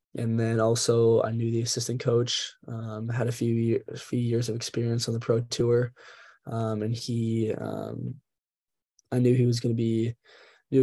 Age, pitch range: 20-39, 115-125 Hz